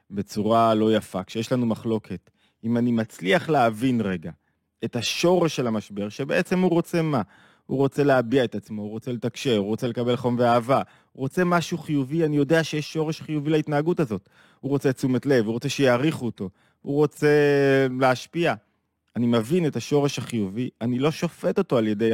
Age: 30-49